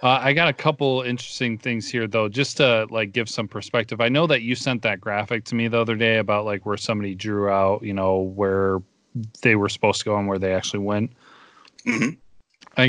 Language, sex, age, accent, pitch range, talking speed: English, male, 30-49, American, 100-120 Hz, 220 wpm